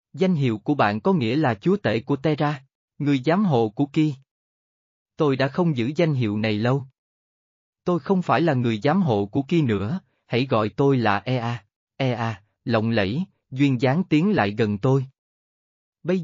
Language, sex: Vietnamese, male